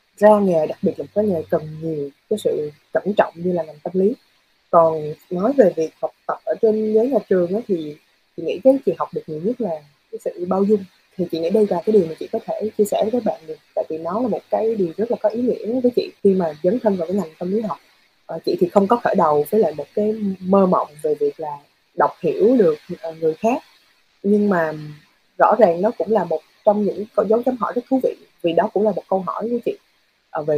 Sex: female